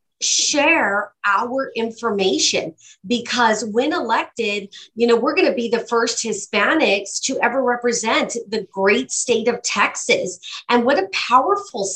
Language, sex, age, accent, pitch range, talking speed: English, female, 40-59, American, 195-250 Hz, 135 wpm